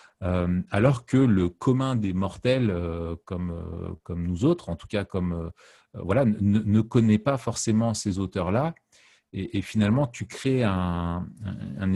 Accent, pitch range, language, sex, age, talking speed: French, 95-115 Hz, French, male, 40-59, 165 wpm